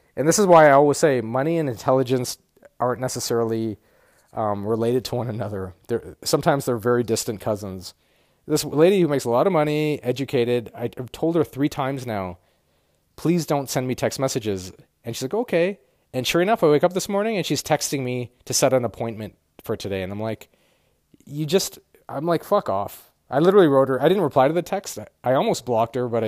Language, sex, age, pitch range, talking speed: English, male, 30-49, 115-150 Hz, 205 wpm